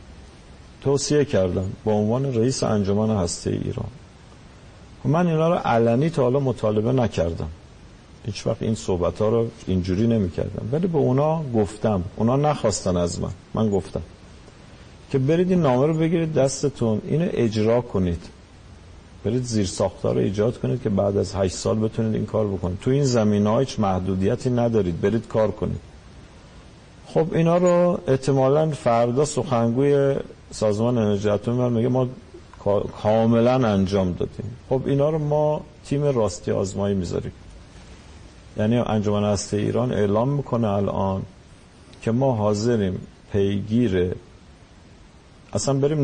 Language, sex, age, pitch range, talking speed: Persian, male, 50-69, 100-130 Hz, 135 wpm